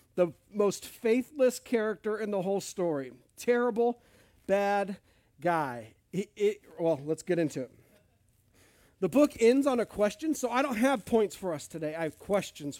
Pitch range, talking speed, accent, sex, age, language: 135-205 Hz, 155 wpm, American, male, 40-59, English